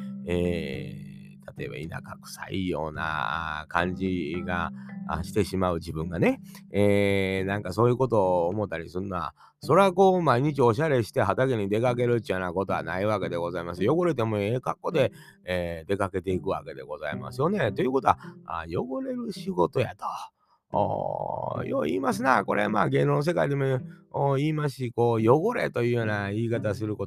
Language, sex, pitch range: Japanese, male, 85-130 Hz